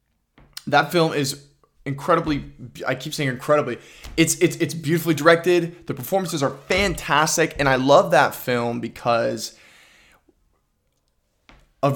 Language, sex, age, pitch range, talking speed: English, male, 20-39, 120-155 Hz, 120 wpm